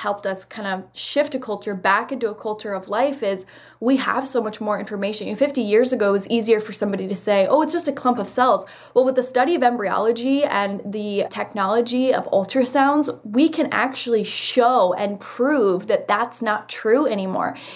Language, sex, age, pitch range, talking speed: English, female, 10-29, 200-240 Hz, 205 wpm